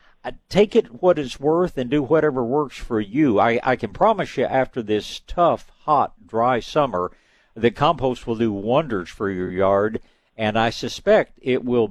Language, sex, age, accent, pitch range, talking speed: English, male, 60-79, American, 110-145 Hz, 175 wpm